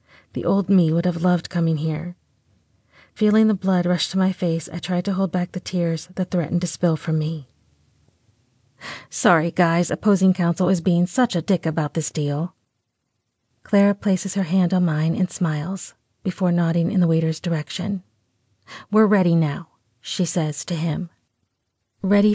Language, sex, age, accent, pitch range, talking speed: English, female, 30-49, American, 160-185 Hz, 165 wpm